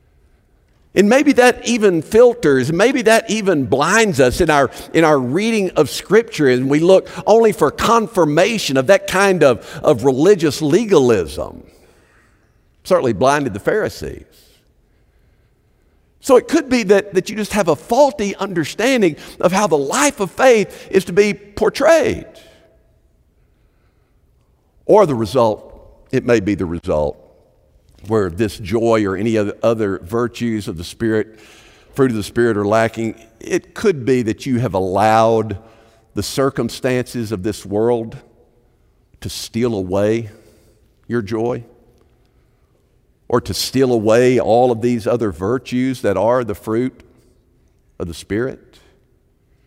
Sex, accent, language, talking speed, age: male, American, English, 135 wpm, 50-69